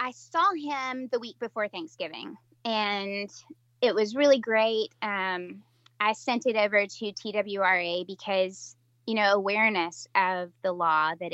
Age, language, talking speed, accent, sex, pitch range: 20-39, English, 145 wpm, American, female, 155-210 Hz